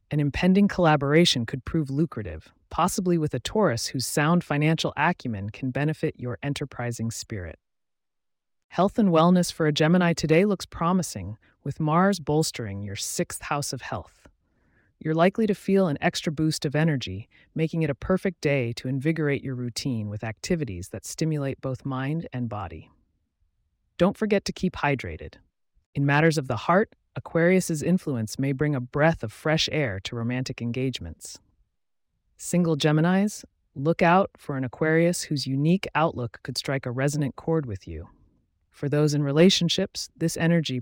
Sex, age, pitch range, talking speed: female, 30-49, 120-170 Hz, 155 wpm